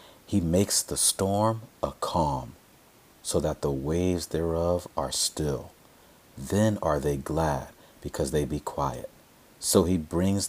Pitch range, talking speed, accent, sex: 70-95 Hz, 135 wpm, American, male